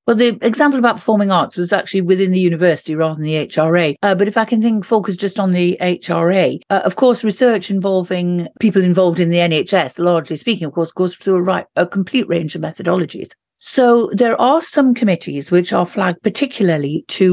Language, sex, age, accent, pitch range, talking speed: English, female, 50-69, British, 170-205 Hz, 205 wpm